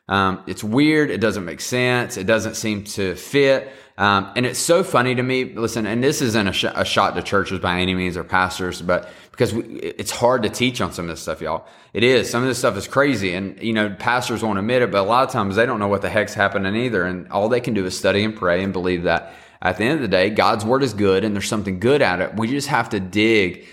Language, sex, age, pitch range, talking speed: English, male, 30-49, 95-125 Hz, 275 wpm